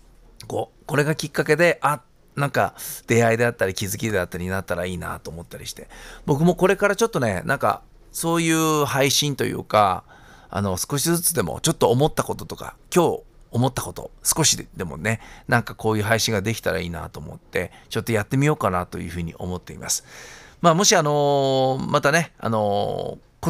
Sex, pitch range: male, 95-145 Hz